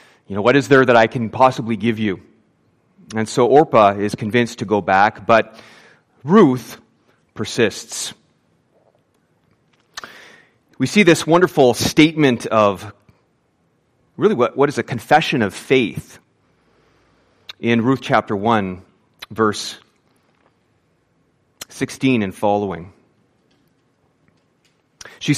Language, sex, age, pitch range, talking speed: English, male, 30-49, 100-130 Hz, 105 wpm